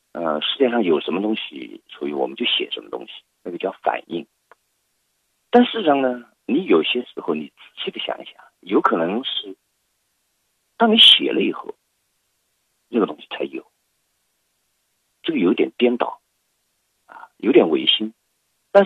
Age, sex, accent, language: 50-69, male, native, Chinese